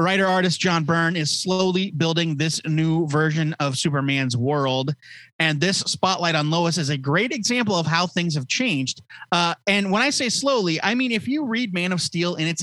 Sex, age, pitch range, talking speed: male, 30-49, 130-175 Hz, 205 wpm